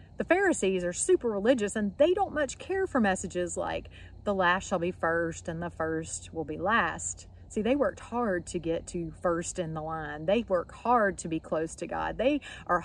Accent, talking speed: American, 210 wpm